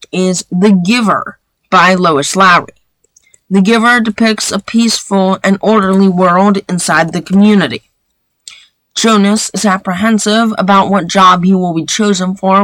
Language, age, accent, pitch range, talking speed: English, 30-49, American, 185-215 Hz, 135 wpm